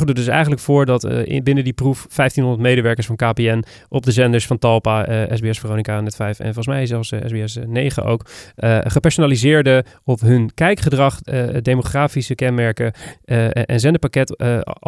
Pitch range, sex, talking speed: 115-145 Hz, male, 180 wpm